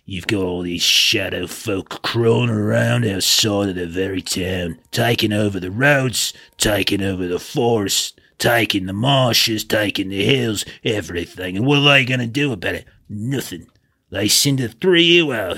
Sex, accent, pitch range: male, British, 90-110 Hz